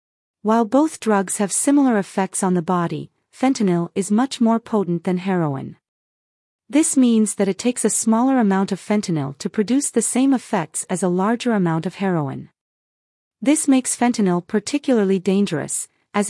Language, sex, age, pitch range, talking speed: English, female, 40-59, 185-235 Hz, 160 wpm